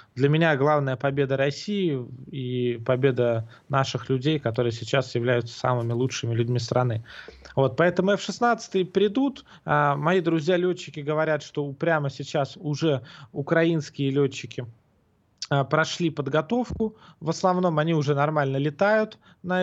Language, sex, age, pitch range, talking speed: Russian, male, 20-39, 130-165 Hz, 115 wpm